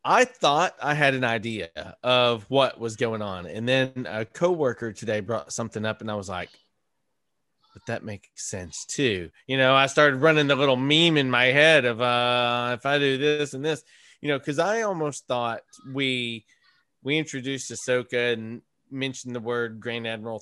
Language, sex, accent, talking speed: English, male, American, 185 wpm